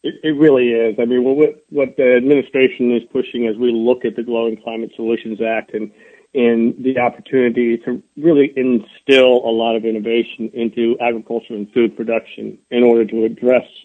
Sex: male